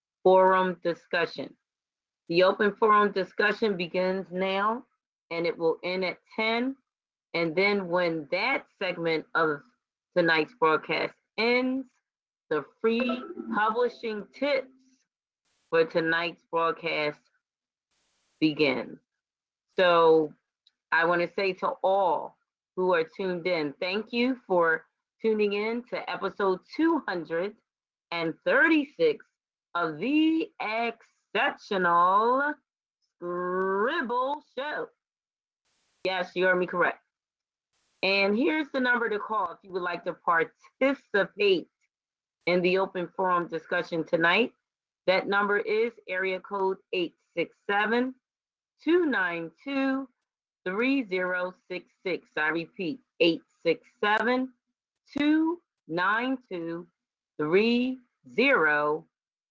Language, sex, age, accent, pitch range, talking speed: English, female, 30-49, American, 175-255 Hz, 90 wpm